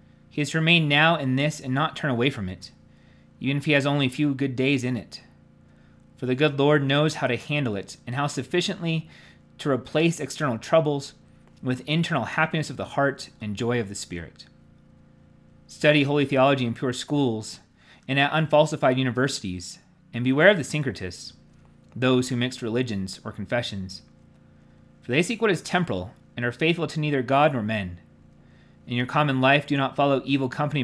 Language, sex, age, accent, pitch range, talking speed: English, male, 30-49, American, 95-150 Hz, 185 wpm